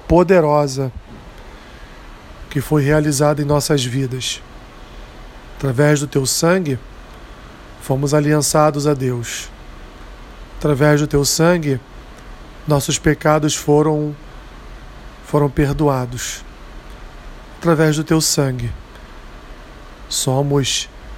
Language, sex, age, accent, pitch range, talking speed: Portuguese, male, 40-59, Brazilian, 130-155 Hz, 80 wpm